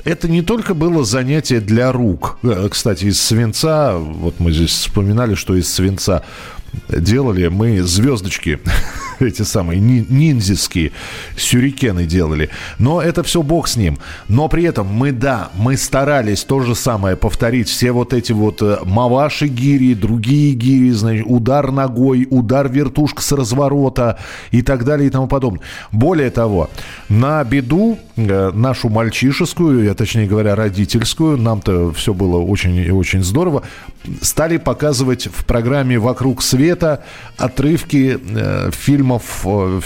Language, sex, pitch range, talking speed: Russian, male, 105-140 Hz, 135 wpm